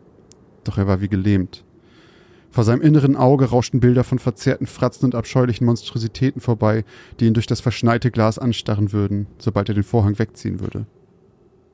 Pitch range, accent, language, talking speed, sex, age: 105-125 Hz, German, German, 165 wpm, male, 30-49